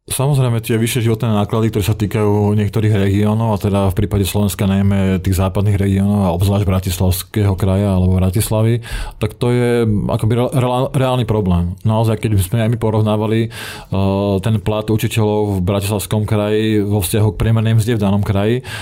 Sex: male